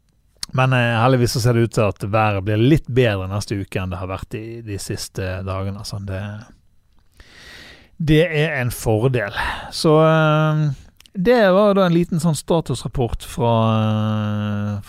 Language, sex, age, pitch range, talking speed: English, male, 30-49, 105-130 Hz, 145 wpm